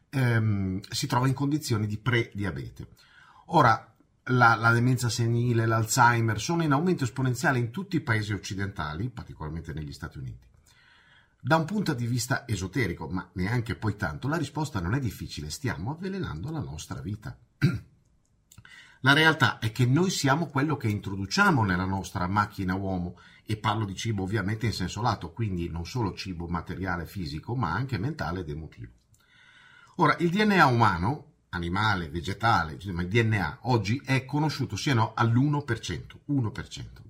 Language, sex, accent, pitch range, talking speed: Italian, male, native, 95-135 Hz, 150 wpm